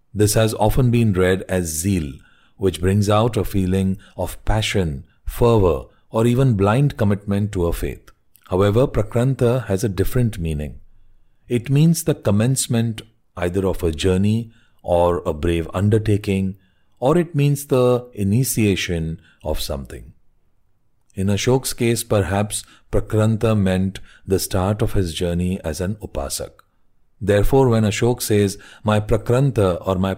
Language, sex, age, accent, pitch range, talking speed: English, male, 40-59, Indian, 95-115 Hz, 135 wpm